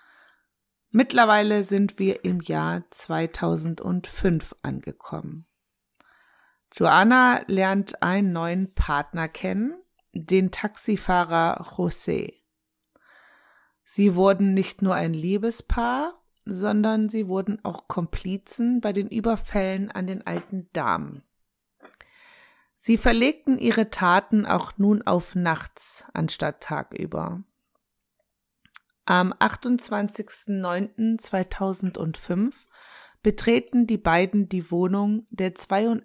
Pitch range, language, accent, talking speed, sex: 180-225 Hz, German, German, 85 wpm, female